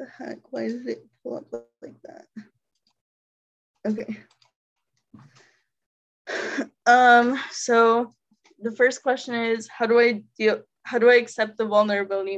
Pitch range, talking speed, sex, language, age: 205-235 Hz, 125 wpm, female, English, 10-29